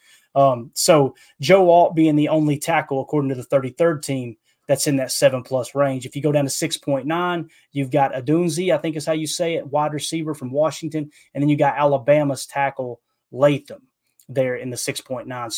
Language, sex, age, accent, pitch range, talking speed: English, male, 20-39, American, 130-155 Hz, 195 wpm